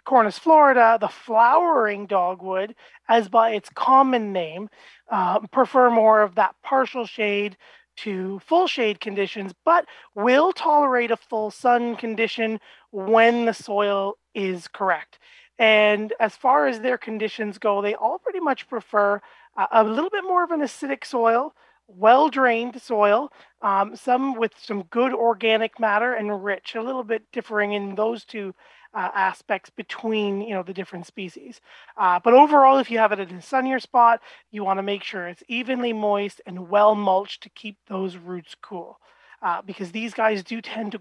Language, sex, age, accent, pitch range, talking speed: English, male, 30-49, American, 200-245 Hz, 165 wpm